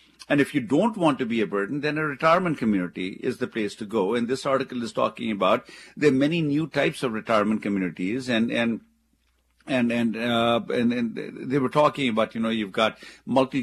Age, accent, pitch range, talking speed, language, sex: 50-69, Indian, 110-135 Hz, 205 wpm, English, male